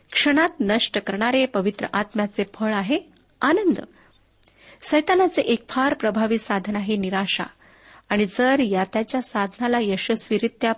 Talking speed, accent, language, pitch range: 110 wpm, native, Marathi, 205-260 Hz